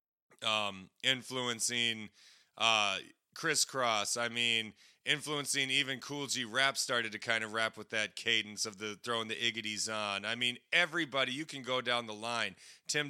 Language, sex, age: English, male, 30-49